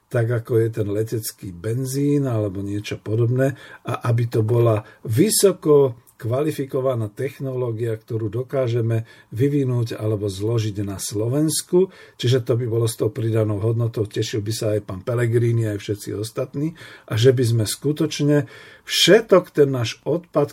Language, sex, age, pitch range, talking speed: Slovak, male, 50-69, 110-135 Hz, 145 wpm